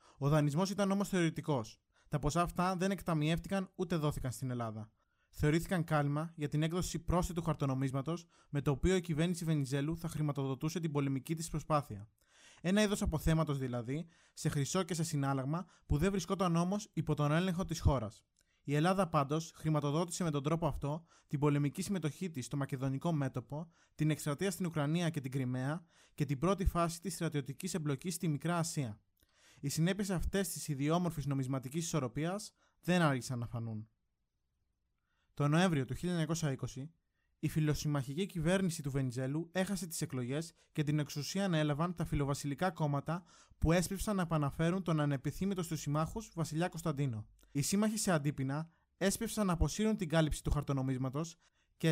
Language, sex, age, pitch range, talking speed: Greek, male, 20-39, 145-180 Hz, 155 wpm